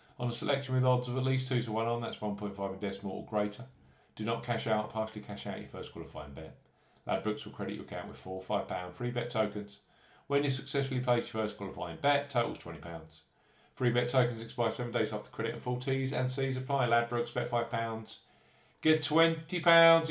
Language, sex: English, male